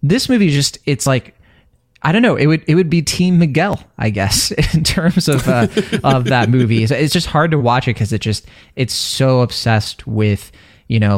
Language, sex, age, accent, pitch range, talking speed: English, male, 20-39, American, 100-135 Hz, 215 wpm